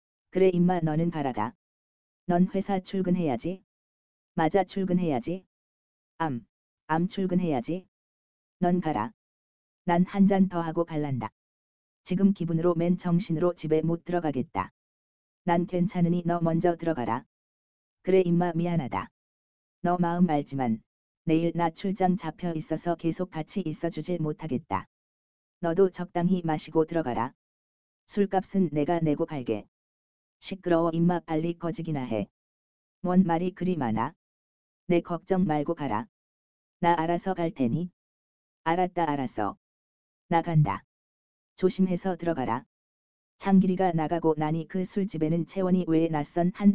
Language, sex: Korean, female